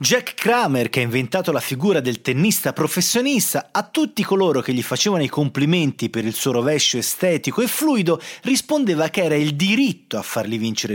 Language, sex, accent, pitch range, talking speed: Italian, male, native, 135-215 Hz, 180 wpm